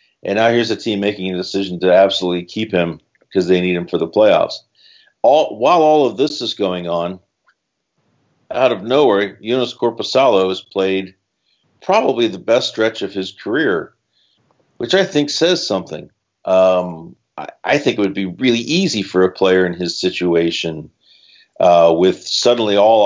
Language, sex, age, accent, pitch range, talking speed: English, male, 50-69, American, 90-100 Hz, 165 wpm